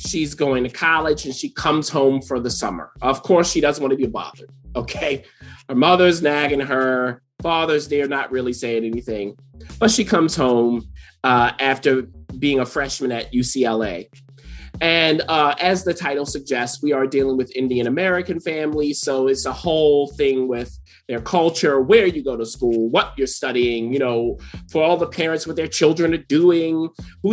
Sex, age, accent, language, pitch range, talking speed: male, 30-49, American, English, 120-165 Hz, 180 wpm